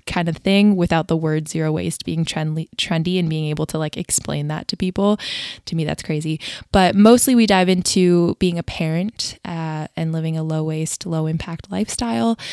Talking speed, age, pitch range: 195 wpm, 20-39, 165-190 Hz